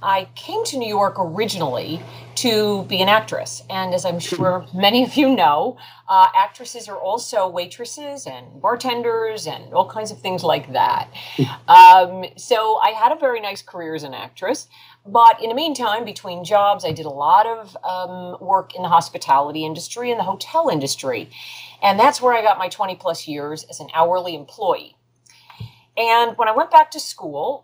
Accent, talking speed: American, 180 wpm